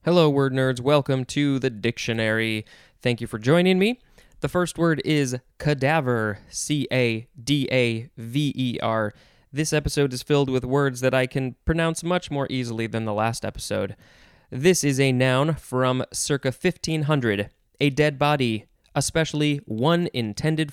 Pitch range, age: 115-145 Hz, 20-39